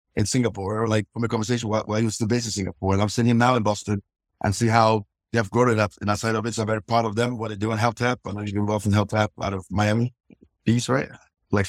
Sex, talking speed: male, 280 wpm